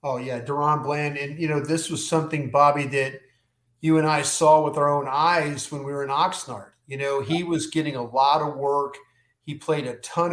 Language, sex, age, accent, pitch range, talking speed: English, male, 40-59, American, 135-160 Hz, 220 wpm